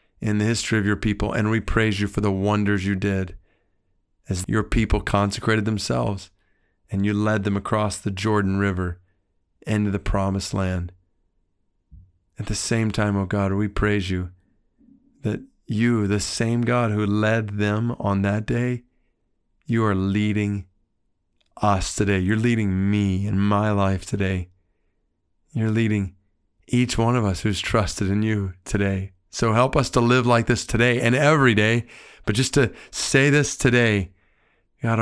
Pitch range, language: 95-115 Hz, English